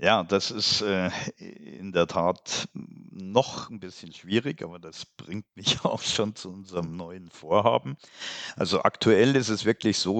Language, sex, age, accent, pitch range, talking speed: German, male, 50-69, German, 80-95 Hz, 155 wpm